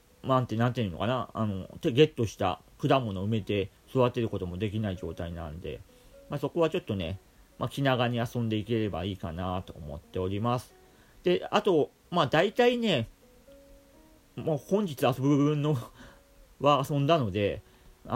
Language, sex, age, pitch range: Japanese, male, 40-59, 100-150 Hz